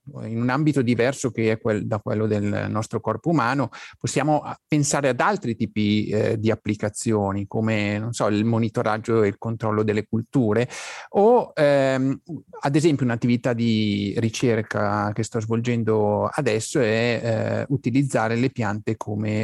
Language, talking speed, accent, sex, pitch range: Italian, 145 wpm, native, male, 110-140 Hz